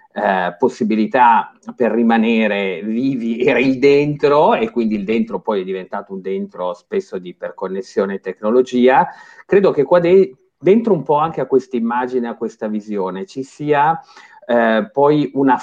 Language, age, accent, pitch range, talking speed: Italian, 40-59, native, 105-140 Hz, 155 wpm